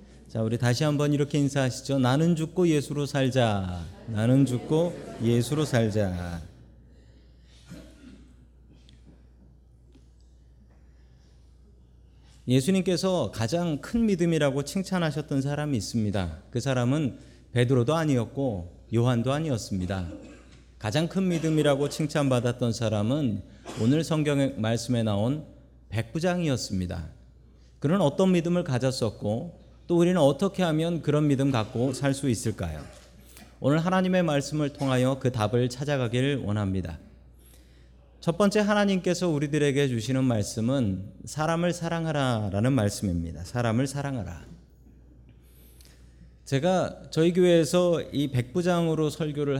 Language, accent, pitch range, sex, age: Korean, native, 95-150 Hz, male, 40-59